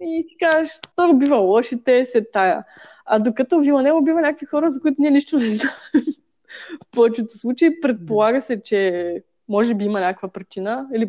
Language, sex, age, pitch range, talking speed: Bulgarian, female, 20-39, 210-265 Hz, 180 wpm